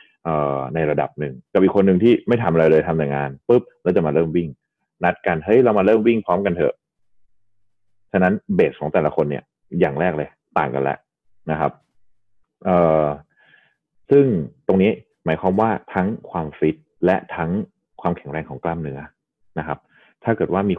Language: Thai